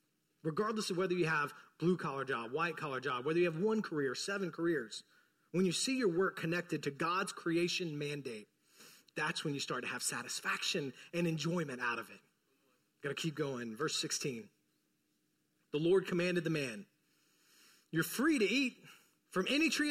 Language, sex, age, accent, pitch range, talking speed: English, male, 40-59, American, 165-255 Hz, 175 wpm